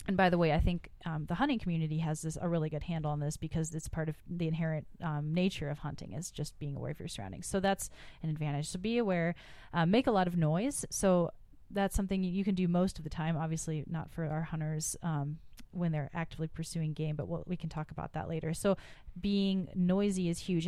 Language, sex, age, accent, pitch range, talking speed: English, female, 30-49, American, 155-180 Hz, 240 wpm